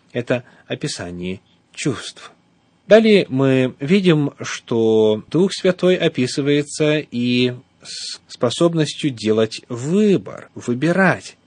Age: 30-49